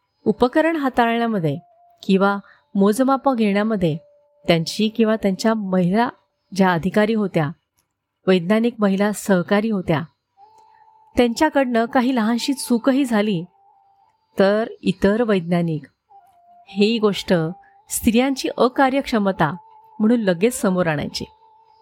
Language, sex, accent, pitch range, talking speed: Marathi, female, native, 195-270 Hz, 90 wpm